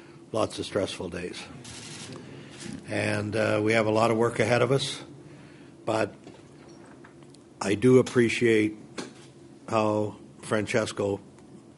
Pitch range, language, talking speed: 105-115 Hz, English, 105 wpm